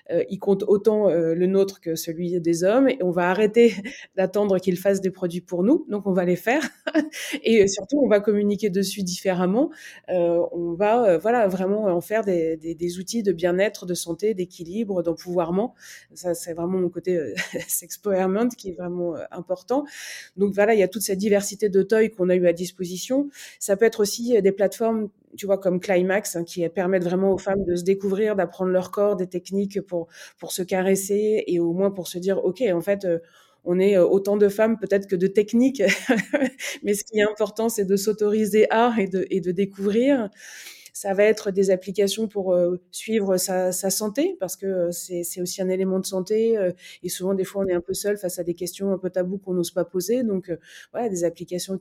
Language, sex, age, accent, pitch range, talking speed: French, female, 20-39, French, 180-210 Hz, 215 wpm